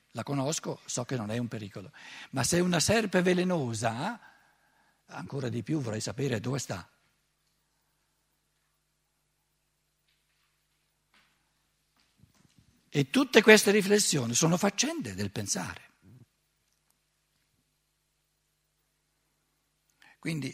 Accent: native